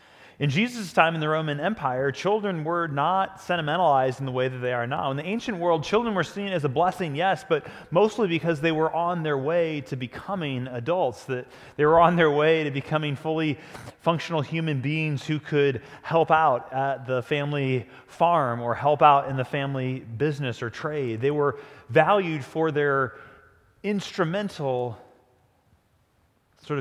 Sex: male